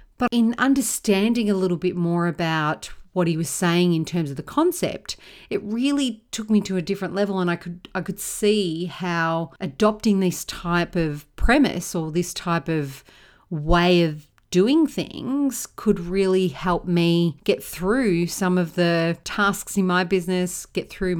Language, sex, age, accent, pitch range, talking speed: English, female, 40-59, Australian, 170-210 Hz, 170 wpm